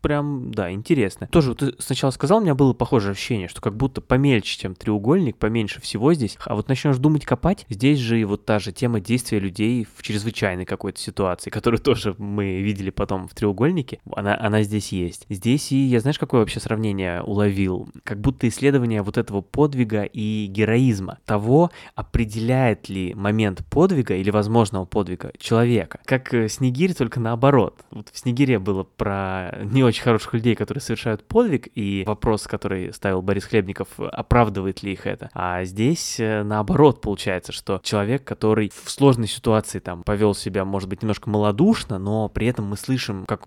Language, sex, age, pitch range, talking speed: Russian, male, 20-39, 100-120 Hz, 175 wpm